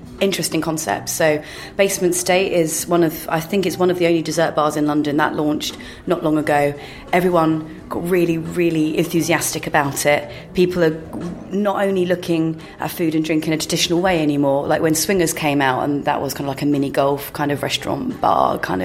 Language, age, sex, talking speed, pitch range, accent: English, 30-49, female, 205 wpm, 145-165 Hz, British